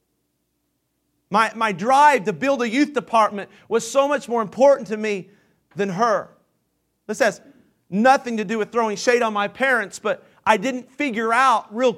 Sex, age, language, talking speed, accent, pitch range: male, 40-59, English, 170 wpm, American, 195-270 Hz